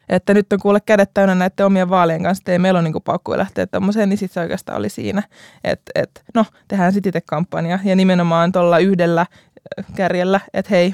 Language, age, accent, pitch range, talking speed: Finnish, 20-39, native, 175-205 Hz, 205 wpm